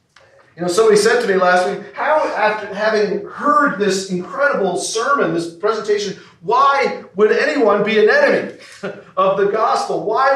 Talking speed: 155 wpm